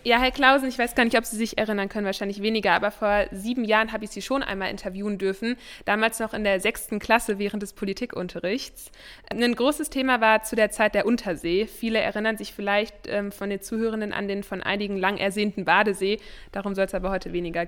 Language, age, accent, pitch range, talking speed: German, 20-39, German, 195-225 Hz, 215 wpm